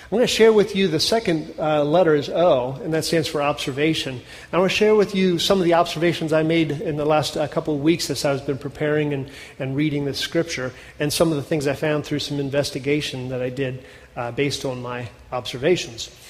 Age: 40-59